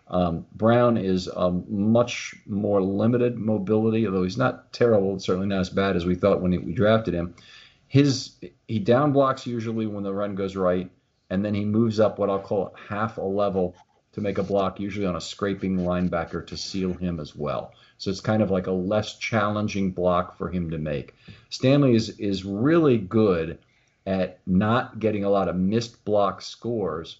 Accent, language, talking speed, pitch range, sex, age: American, English, 190 wpm, 90-110 Hz, male, 40-59